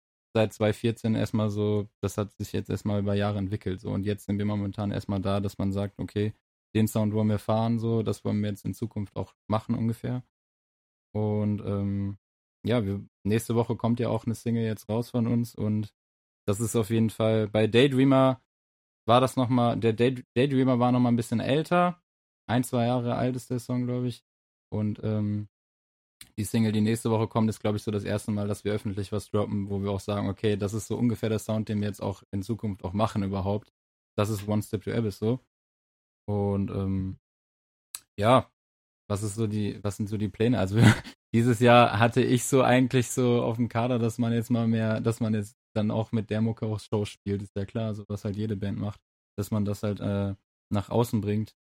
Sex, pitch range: male, 100-115 Hz